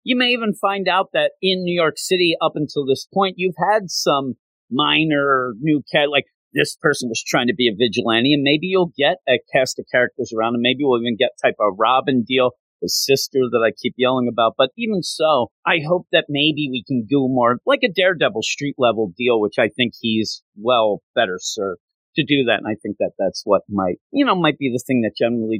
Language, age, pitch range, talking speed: English, 40-59, 115-165 Hz, 225 wpm